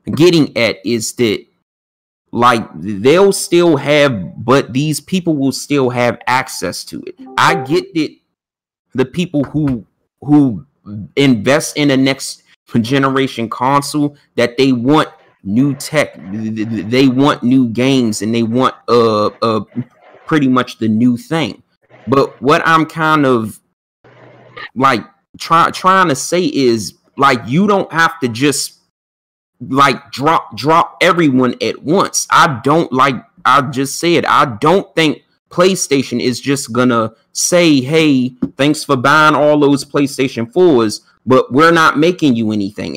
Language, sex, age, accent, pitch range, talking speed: English, male, 30-49, American, 120-155 Hz, 140 wpm